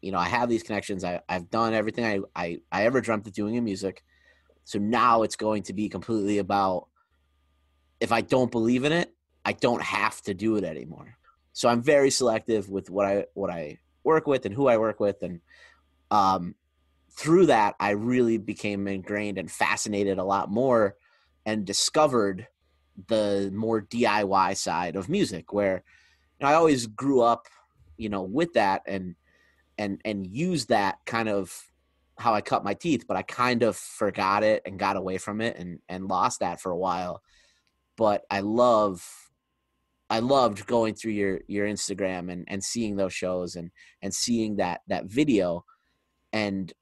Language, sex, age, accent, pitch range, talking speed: English, male, 30-49, American, 95-110 Hz, 175 wpm